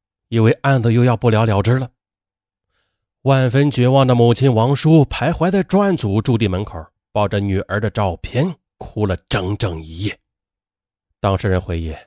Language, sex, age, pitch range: Chinese, male, 30-49, 95-140 Hz